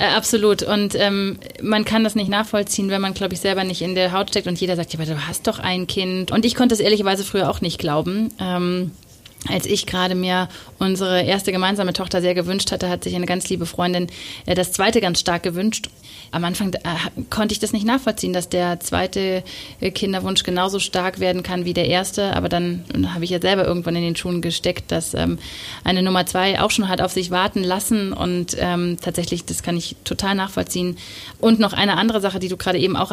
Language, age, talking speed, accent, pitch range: German, 30-49, 210 wpm, German, 175-200 Hz